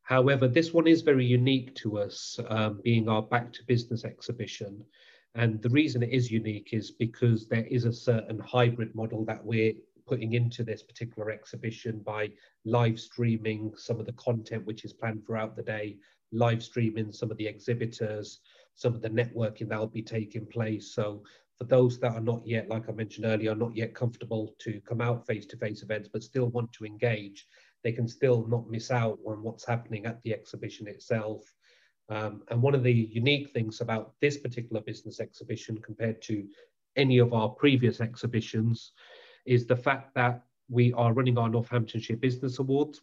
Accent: British